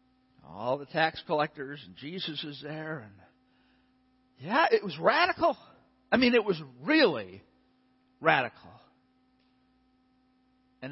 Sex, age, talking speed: male, 60-79, 110 wpm